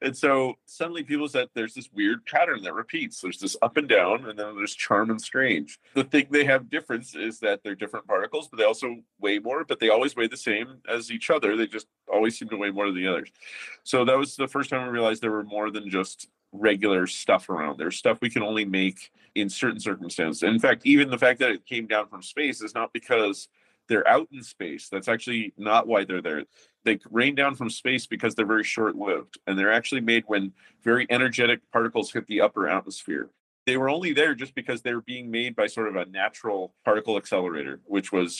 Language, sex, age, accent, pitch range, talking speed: English, male, 30-49, American, 105-130 Hz, 225 wpm